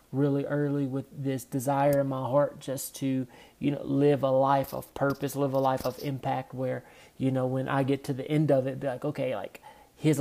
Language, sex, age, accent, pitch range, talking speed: English, male, 30-49, American, 135-150 Hz, 225 wpm